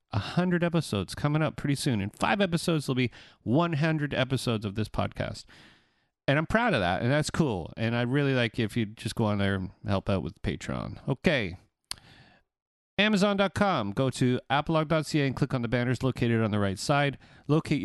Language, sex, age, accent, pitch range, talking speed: English, male, 40-59, American, 110-150 Hz, 185 wpm